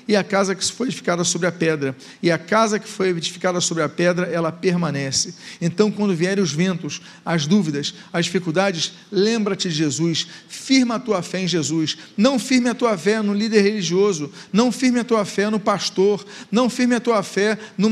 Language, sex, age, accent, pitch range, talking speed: Portuguese, male, 40-59, Brazilian, 175-220 Hz, 200 wpm